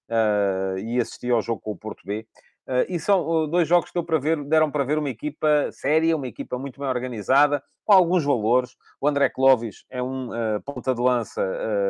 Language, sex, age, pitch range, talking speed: Portuguese, male, 40-59, 115-150 Hz, 175 wpm